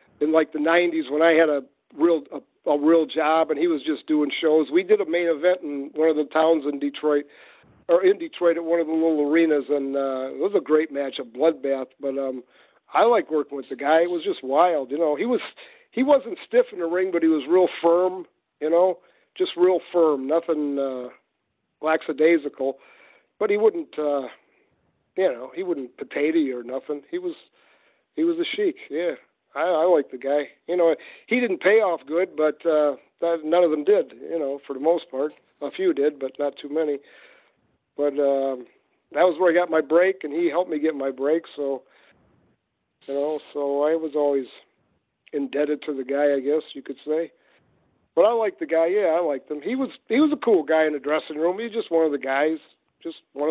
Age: 50-69